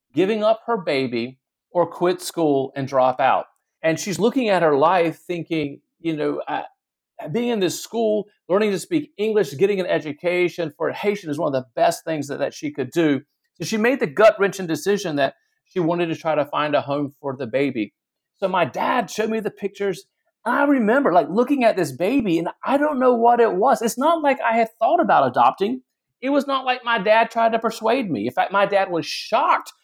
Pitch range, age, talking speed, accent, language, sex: 160-230 Hz, 40-59, 215 wpm, American, English, male